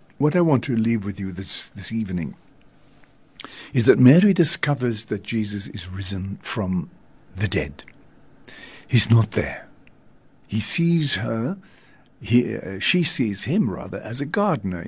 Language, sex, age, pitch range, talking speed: English, male, 60-79, 105-150 Hz, 145 wpm